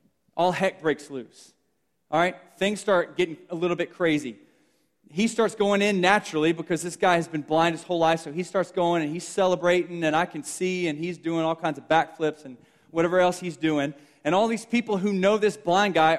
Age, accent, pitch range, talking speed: 30-49, American, 160-195 Hz, 220 wpm